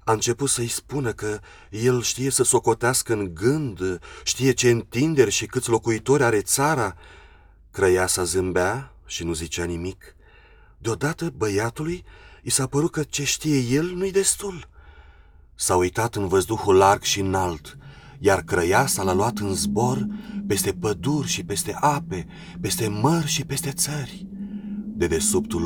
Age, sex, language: 30-49, male, Romanian